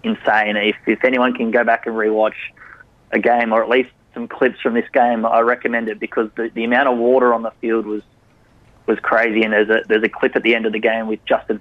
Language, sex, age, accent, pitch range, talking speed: English, male, 20-39, Australian, 110-125 Hz, 250 wpm